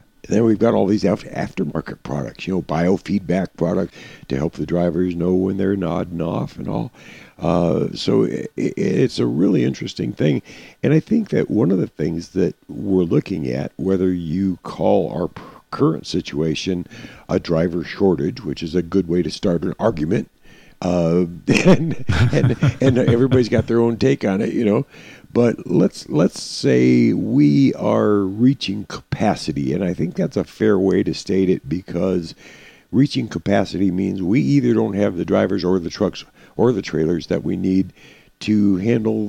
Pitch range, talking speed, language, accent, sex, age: 85-110 Hz, 175 wpm, English, American, male, 50-69